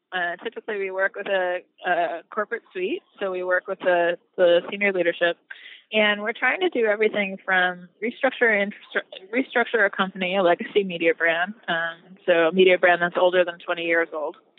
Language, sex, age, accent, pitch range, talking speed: English, female, 20-39, American, 180-215 Hz, 175 wpm